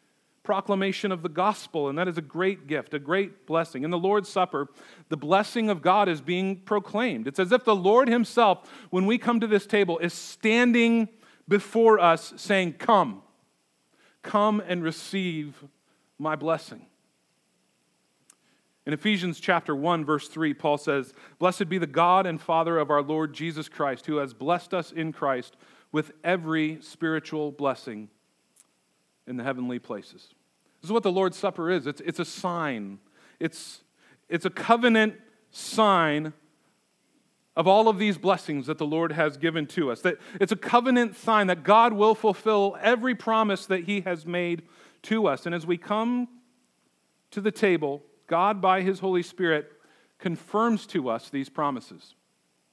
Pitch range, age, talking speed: 155-205 Hz, 40-59, 160 wpm